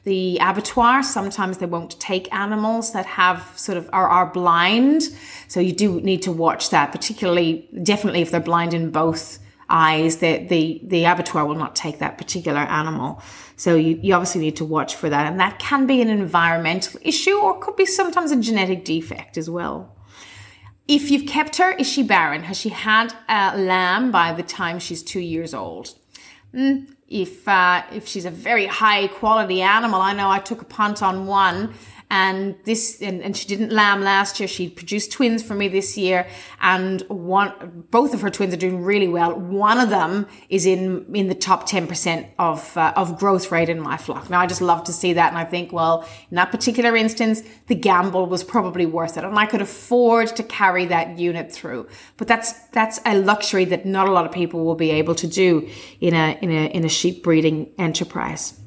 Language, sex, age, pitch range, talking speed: English, female, 30-49, 170-210 Hz, 205 wpm